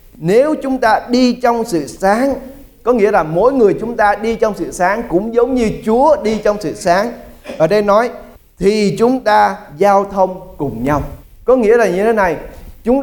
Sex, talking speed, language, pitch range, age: male, 200 wpm, English, 155-215 Hz, 20-39